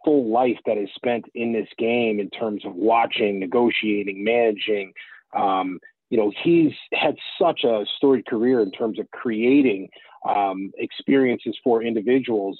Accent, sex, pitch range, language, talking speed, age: American, male, 115-150 Hz, English, 150 wpm, 30-49